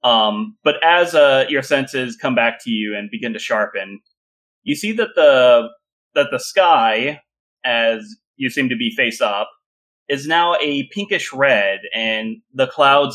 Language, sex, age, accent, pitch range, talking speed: English, male, 30-49, American, 120-180 Hz, 165 wpm